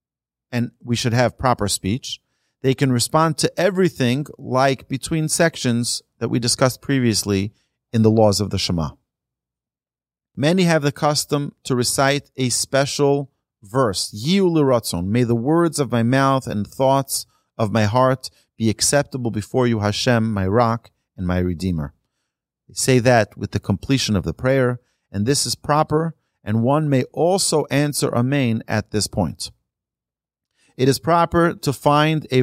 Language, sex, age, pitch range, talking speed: English, male, 40-59, 110-135 Hz, 155 wpm